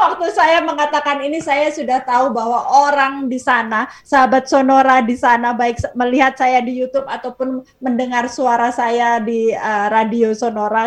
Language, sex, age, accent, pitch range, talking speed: Indonesian, female, 20-39, native, 235-280 Hz, 155 wpm